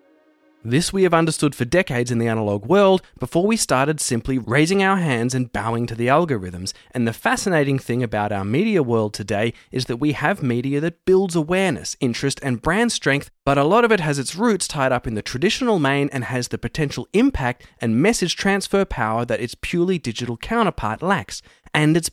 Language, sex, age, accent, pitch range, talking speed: English, male, 20-39, Australian, 120-185 Hz, 200 wpm